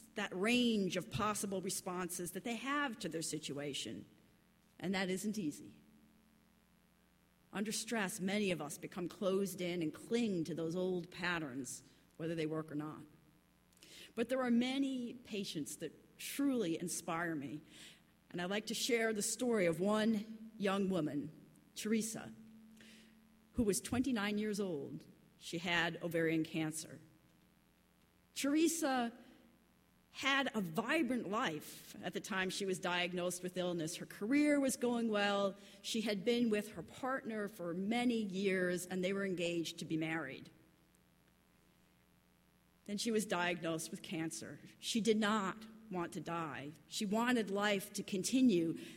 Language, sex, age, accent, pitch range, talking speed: English, female, 40-59, American, 165-220 Hz, 140 wpm